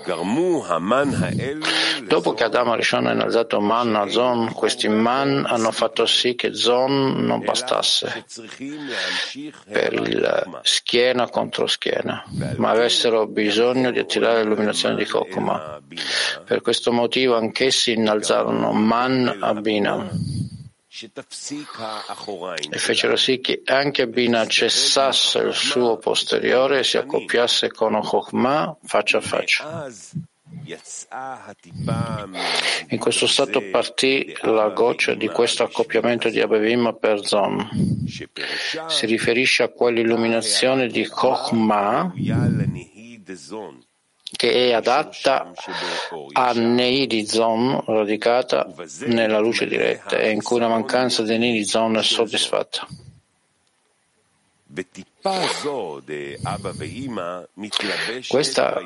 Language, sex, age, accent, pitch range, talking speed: Italian, male, 50-69, native, 110-135 Hz, 95 wpm